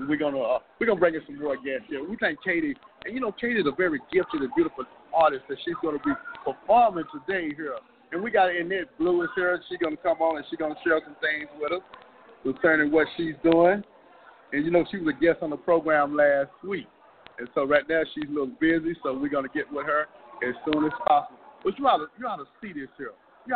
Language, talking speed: English, 240 wpm